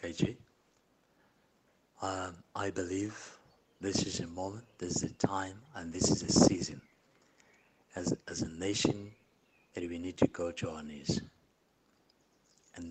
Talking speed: 140 wpm